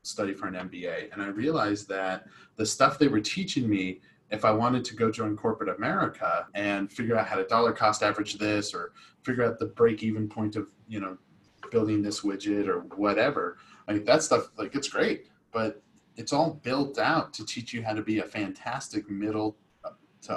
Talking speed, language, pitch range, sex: 200 wpm, English, 105-135 Hz, male